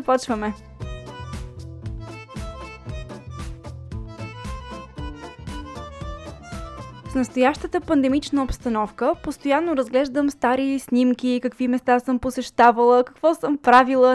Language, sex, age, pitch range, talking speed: Bulgarian, female, 20-39, 225-285 Hz, 70 wpm